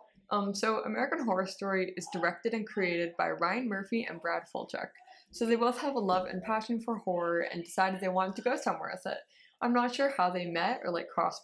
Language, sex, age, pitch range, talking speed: English, female, 20-39, 180-225 Hz, 225 wpm